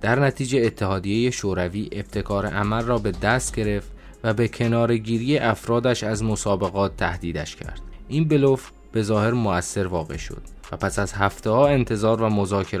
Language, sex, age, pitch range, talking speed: Persian, male, 20-39, 90-110 Hz, 160 wpm